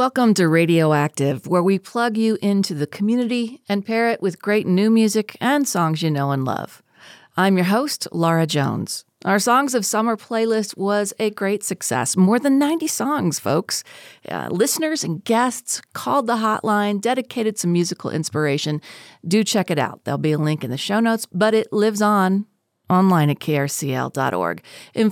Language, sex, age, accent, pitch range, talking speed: English, female, 40-59, American, 170-220 Hz, 175 wpm